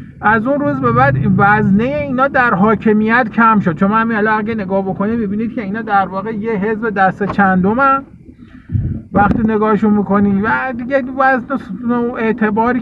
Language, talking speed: Persian, 155 wpm